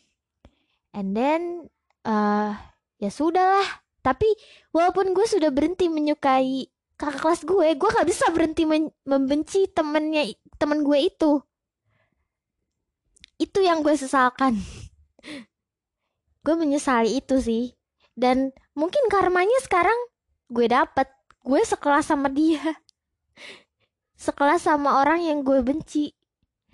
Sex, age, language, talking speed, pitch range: female, 20-39, Indonesian, 110 wpm, 240-315 Hz